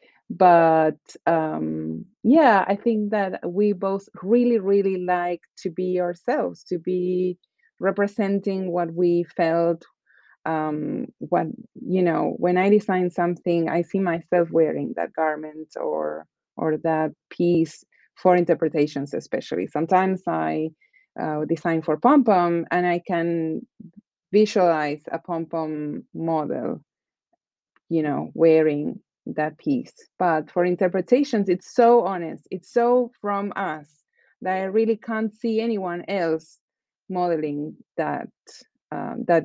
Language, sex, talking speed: English, female, 120 wpm